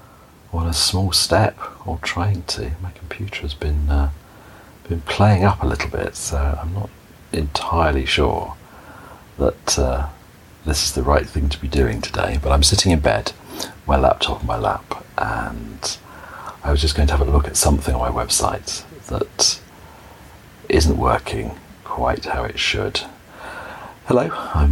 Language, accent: English, British